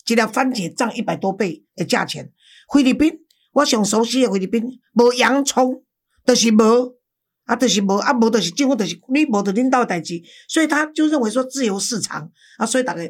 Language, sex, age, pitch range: Chinese, female, 50-69, 190-250 Hz